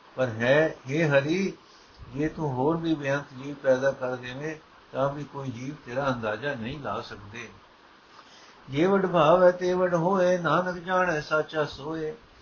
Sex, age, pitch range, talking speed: male, 60-79, 130-155 Hz, 155 wpm